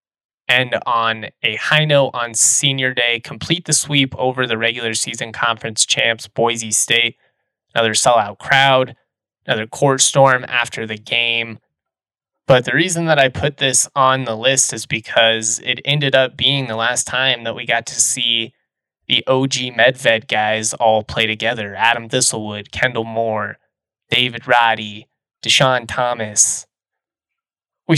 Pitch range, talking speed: 115-135 Hz, 145 wpm